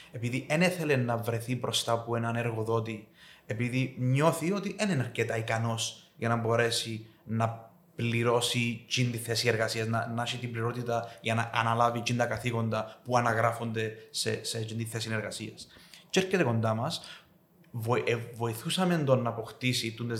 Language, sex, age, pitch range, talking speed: Greek, male, 30-49, 115-150 Hz, 150 wpm